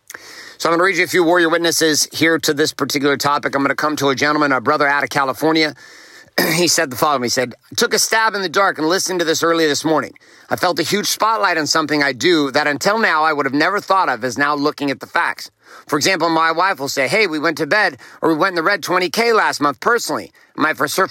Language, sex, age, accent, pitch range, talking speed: English, male, 50-69, American, 145-190 Hz, 270 wpm